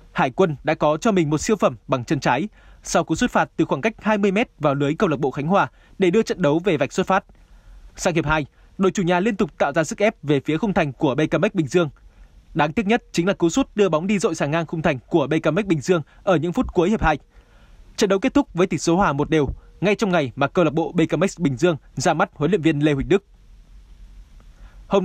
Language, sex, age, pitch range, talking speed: Vietnamese, male, 20-39, 145-195 Hz, 265 wpm